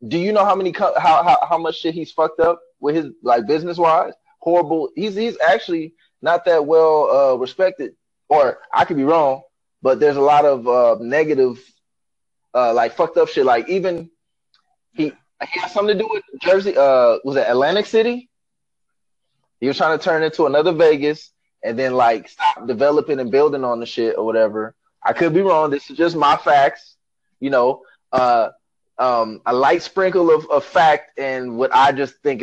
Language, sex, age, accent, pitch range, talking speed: English, male, 20-39, American, 140-185 Hz, 185 wpm